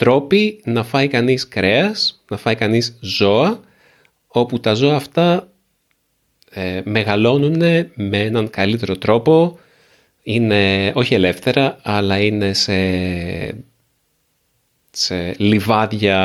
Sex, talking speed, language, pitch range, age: male, 95 wpm, Greek, 95-130 Hz, 30-49